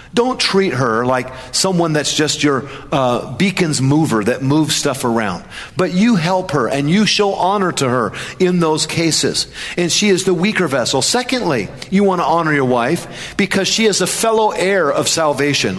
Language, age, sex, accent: English, 40-59, male, American